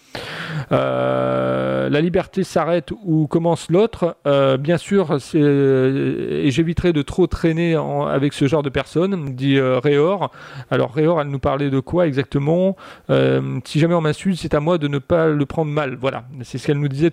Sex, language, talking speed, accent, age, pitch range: male, French, 185 wpm, French, 40-59, 135-170 Hz